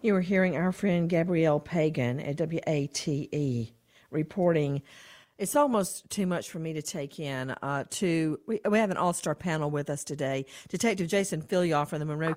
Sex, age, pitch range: female, 50-69, 155-195 Hz